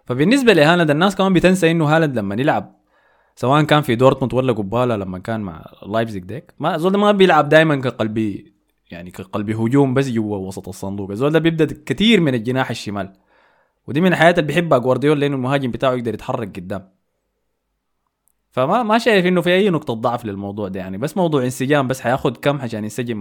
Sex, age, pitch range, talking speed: male, 20-39, 105-150 Hz, 185 wpm